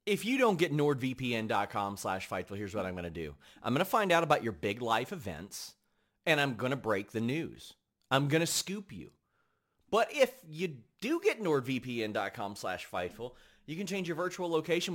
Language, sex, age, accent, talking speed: English, male, 30-49, American, 195 wpm